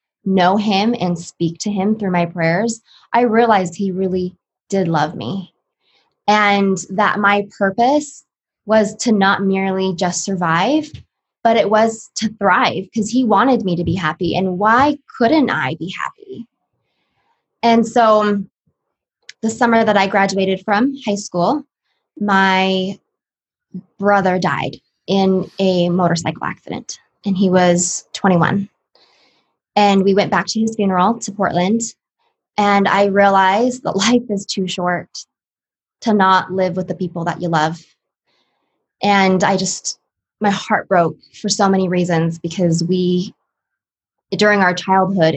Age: 20-39